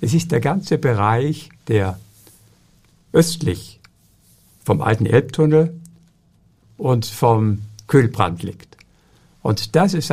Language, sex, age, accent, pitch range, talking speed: German, male, 60-79, German, 115-160 Hz, 100 wpm